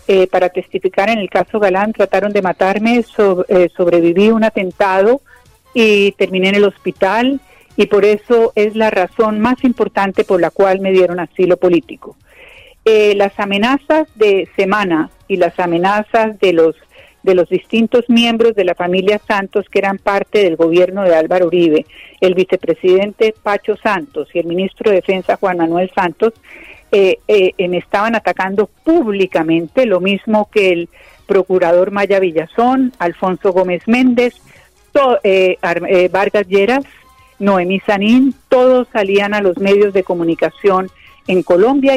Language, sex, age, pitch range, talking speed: Spanish, female, 50-69, 185-225 Hz, 145 wpm